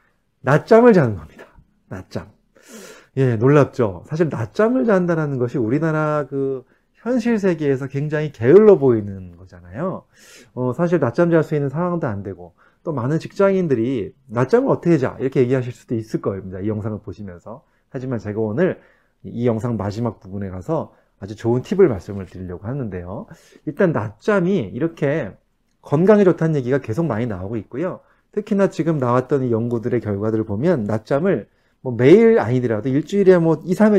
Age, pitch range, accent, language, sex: 30-49, 110-165 Hz, native, Korean, male